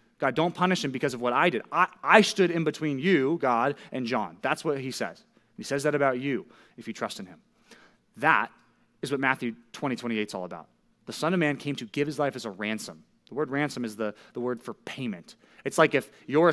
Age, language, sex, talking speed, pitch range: 30-49, English, male, 240 wpm, 125-165 Hz